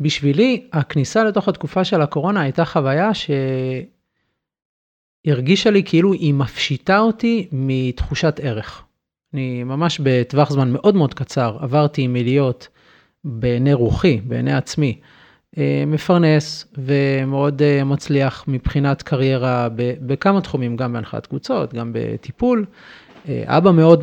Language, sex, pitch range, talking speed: Hebrew, male, 130-175 Hz, 105 wpm